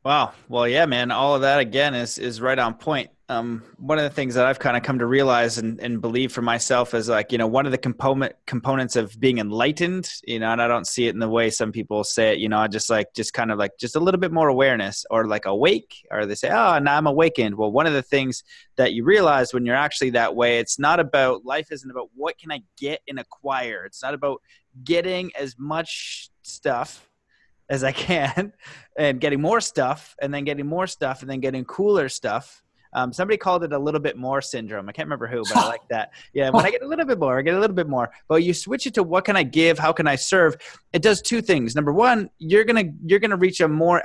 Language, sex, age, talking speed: English, male, 20-39, 255 wpm